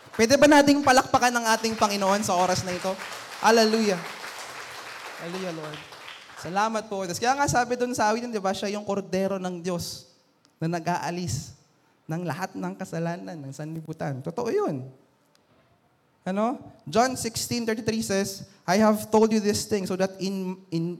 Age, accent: 20-39, native